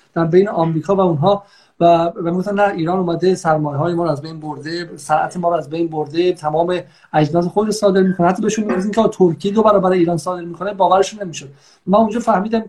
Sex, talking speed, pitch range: male, 210 wpm, 155-185 Hz